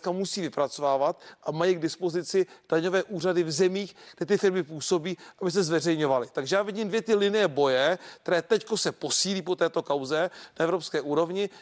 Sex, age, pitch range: male, 40-59, 160-195 Hz